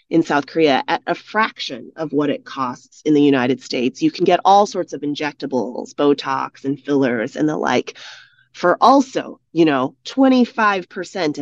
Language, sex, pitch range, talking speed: English, female, 140-190 Hz, 170 wpm